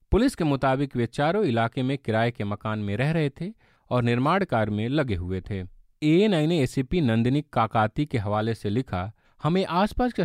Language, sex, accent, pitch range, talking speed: Hindi, male, native, 110-155 Hz, 200 wpm